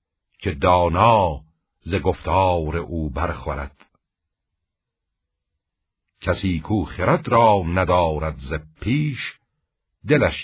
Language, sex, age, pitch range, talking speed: Persian, male, 60-79, 75-95 Hz, 80 wpm